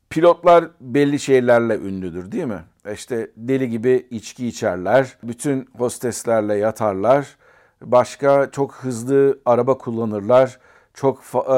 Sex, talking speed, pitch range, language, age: male, 105 wpm, 110-135 Hz, Turkish, 50-69